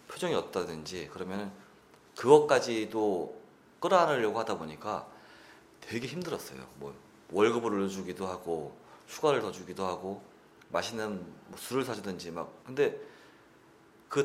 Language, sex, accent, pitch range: Korean, male, native, 95-145 Hz